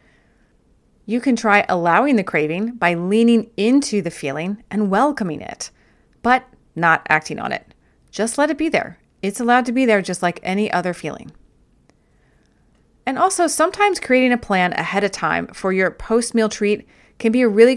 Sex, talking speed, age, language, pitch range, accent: female, 170 wpm, 30-49, English, 185-230 Hz, American